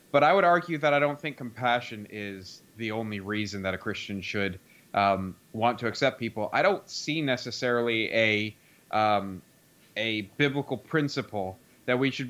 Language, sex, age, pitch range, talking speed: English, male, 30-49, 105-130 Hz, 165 wpm